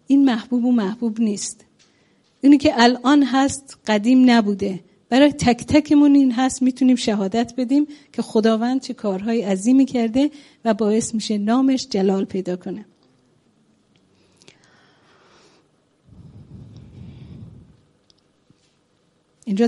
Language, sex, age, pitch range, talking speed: English, female, 40-59, 205-255 Hz, 100 wpm